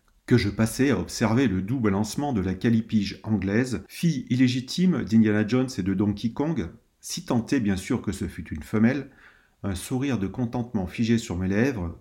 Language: French